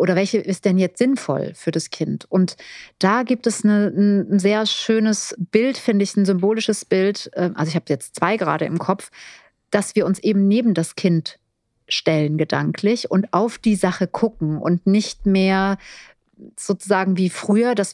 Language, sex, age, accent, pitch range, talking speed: German, female, 30-49, German, 180-215 Hz, 170 wpm